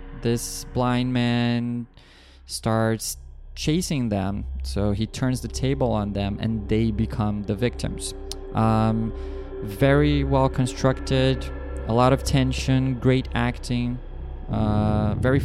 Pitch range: 95-130 Hz